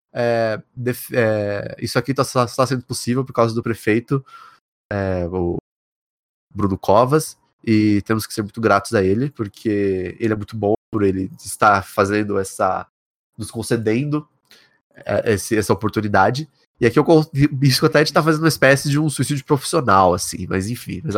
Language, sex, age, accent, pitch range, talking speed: Portuguese, male, 20-39, Brazilian, 105-135 Hz, 165 wpm